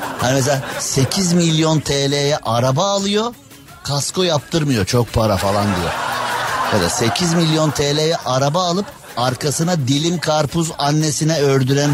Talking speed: 125 wpm